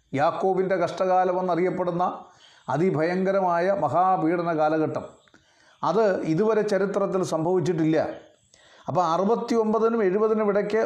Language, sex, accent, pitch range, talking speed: Malayalam, male, native, 155-200 Hz, 70 wpm